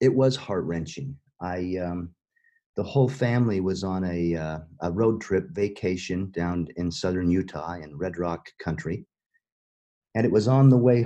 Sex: male